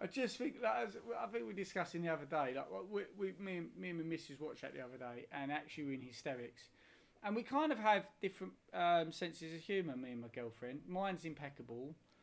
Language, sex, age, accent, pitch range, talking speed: English, male, 30-49, British, 145-180 Hz, 225 wpm